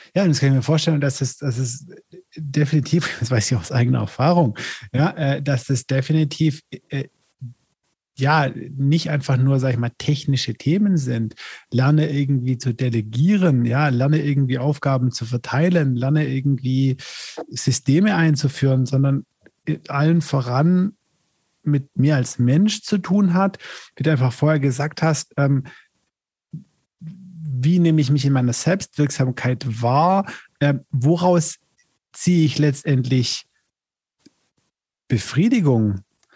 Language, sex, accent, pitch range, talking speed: German, male, German, 135-180 Hz, 130 wpm